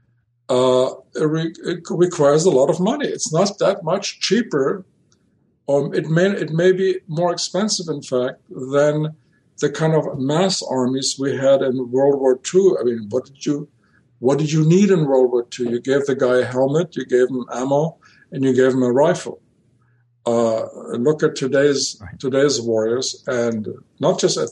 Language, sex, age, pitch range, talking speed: English, male, 50-69, 120-155 Hz, 185 wpm